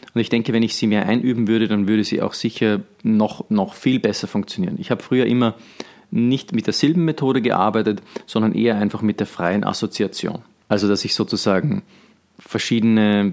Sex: male